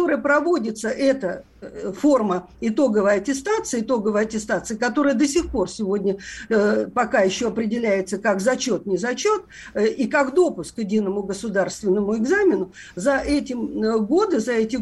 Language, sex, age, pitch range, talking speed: Russian, female, 50-69, 225-295 Hz, 125 wpm